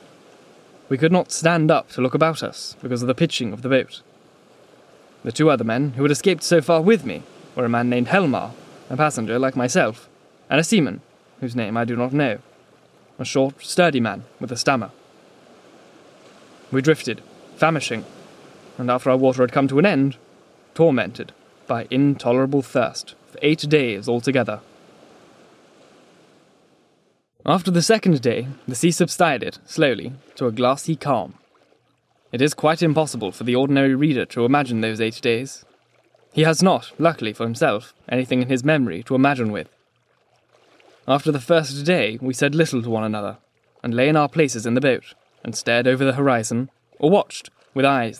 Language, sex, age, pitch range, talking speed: English, male, 20-39, 120-150 Hz, 170 wpm